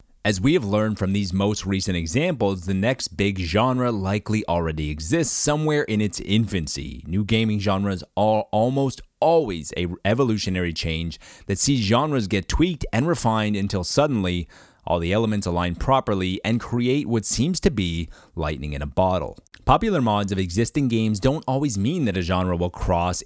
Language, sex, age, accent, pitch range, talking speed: English, male, 30-49, American, 90-120 Hz, 170 wpm